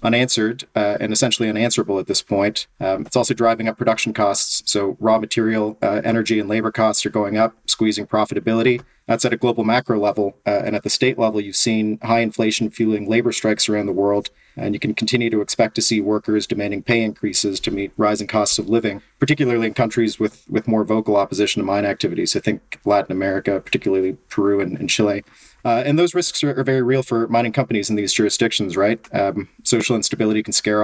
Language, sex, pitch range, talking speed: English, male, 105-115 Hz, 210 wpm